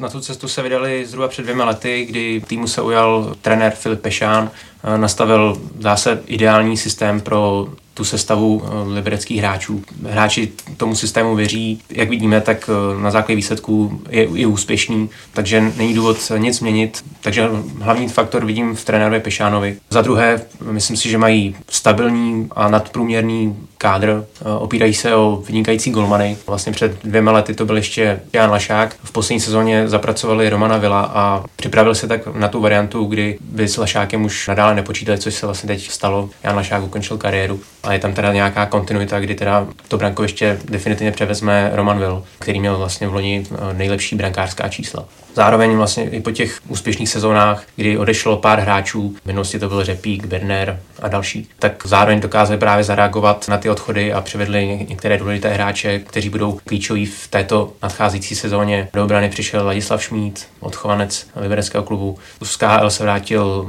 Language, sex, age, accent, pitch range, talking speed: Czech, male, 20-39, native, 100-110 Hz, 165 wpm